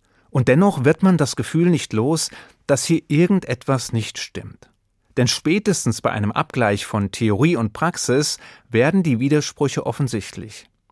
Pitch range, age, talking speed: 110-145 Hz, 30-49, 145 wpm